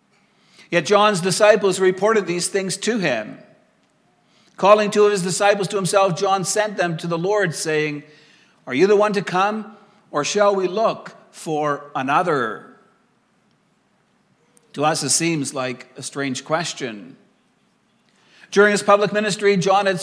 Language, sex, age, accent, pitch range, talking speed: English, male, 60-79, American, 170-205 Hz, 145 wpm